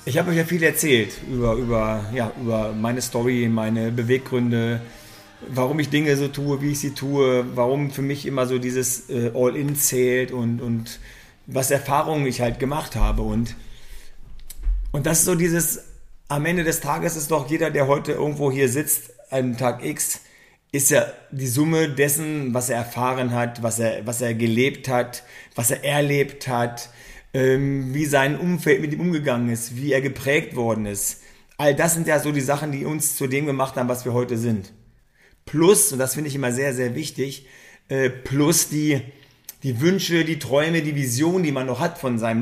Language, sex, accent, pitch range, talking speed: German, male, German, 120-150 Hz, 185 wpm